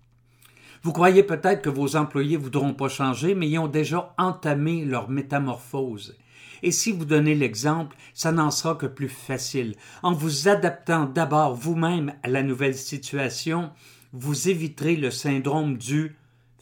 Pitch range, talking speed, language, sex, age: 125-155 Hz, 155 wpm, French, male, 50-69